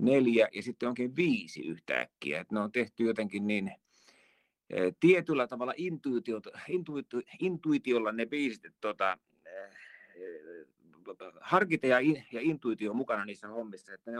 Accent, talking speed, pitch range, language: native, 125 wpm, 115-155 Hz, Finnish